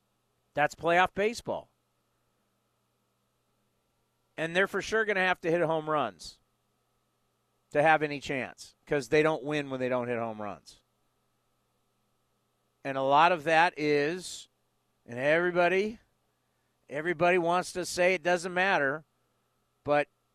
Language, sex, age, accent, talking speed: English, male, 40-59, American, 130 wpm